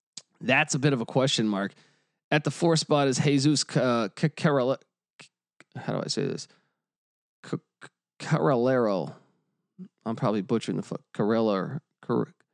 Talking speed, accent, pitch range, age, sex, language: 150 wpm, American, 115-150 Hz, 20-39, male, English